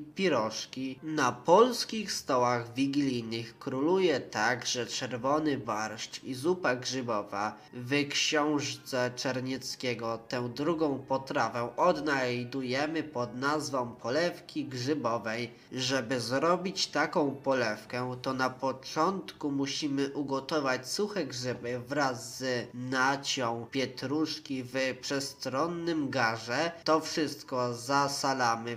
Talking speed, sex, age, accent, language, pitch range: 90 wpm, male, 20-39, native, Polish, 125-150 Hz